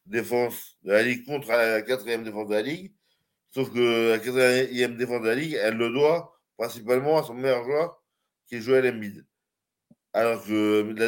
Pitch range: 110-130 Hz